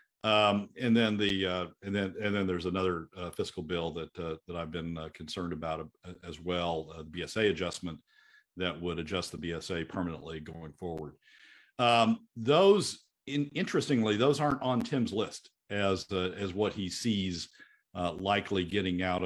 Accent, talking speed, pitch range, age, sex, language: American, 175 wpm, 90-115 Hz, 50-69, male, English